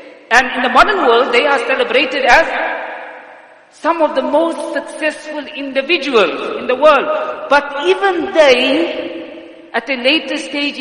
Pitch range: 220-320 Hz